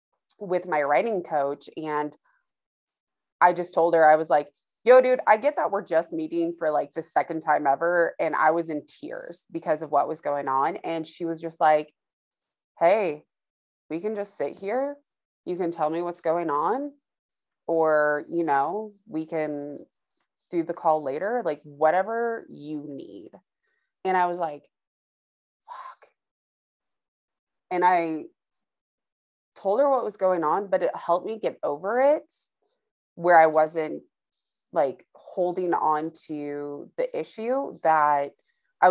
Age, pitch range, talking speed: 20-39, 150-180 Hz, 155 wpm